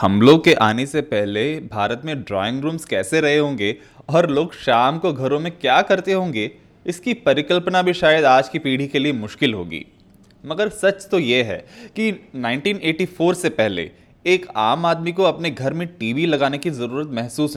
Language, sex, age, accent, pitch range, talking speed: English, male, 20-39, Indian, 115-165 Hz, 180 wpm